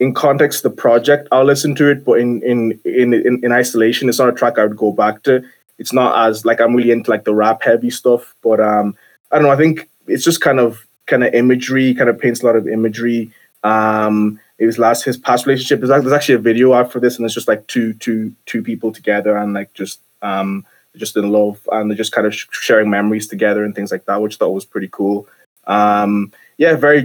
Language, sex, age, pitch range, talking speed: English, male, 20-39, 110-130 Hz, 235 wpm